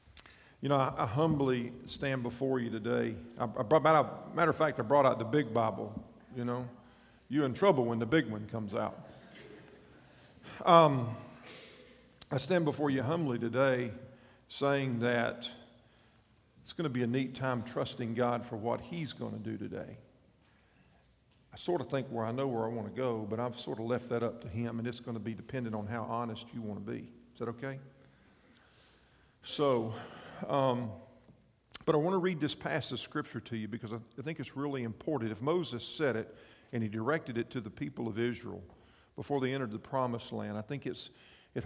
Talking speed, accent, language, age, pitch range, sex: 190 wpm, American, English, 50-69, 115-135 Hz, male